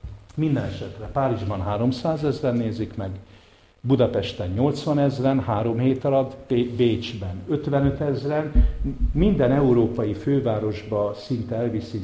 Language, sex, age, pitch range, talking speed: English, male, 50-69, 105-135 Hz, 105 wpm